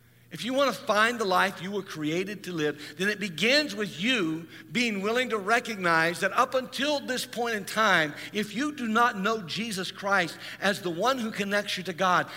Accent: American